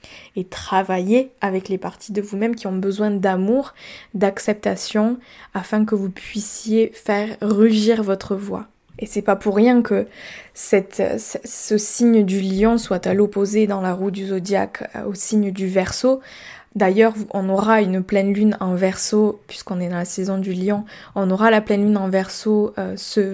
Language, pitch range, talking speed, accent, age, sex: French, 190-220 Hz, 175 wpm, French, 20-39, female